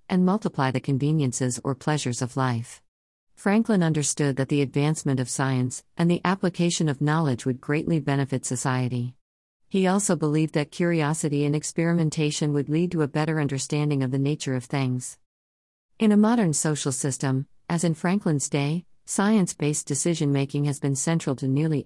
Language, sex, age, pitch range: English, female, 50-69, 135-160 Hz